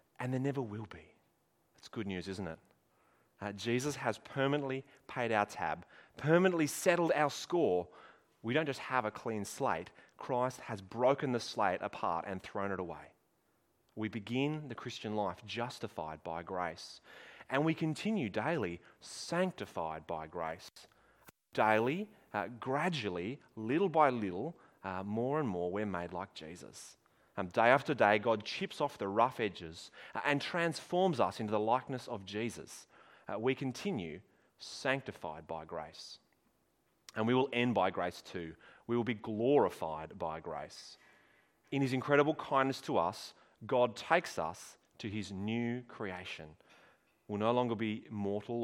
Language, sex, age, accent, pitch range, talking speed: English, male, 30-49, Australian, 100-130 Hz, 150 wpm